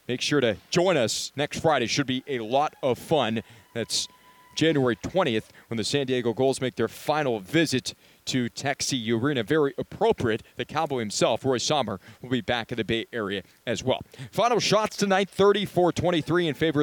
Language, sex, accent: English, male, American